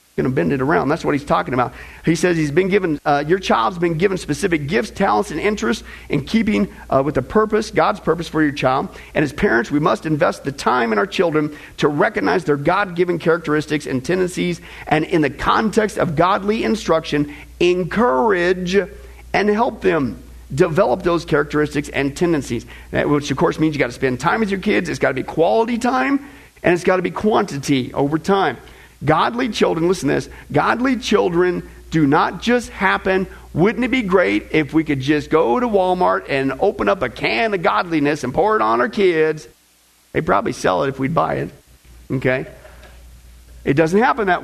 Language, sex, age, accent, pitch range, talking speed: English, male, 50-69, American, 150-215 Hz, 190 wpm